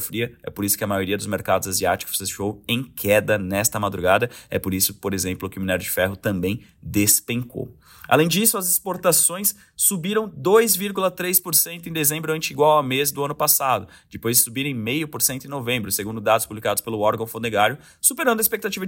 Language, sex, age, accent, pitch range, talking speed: Portuguese, male, 20-39, Brazilian, 100-135 Hz, 180 wpm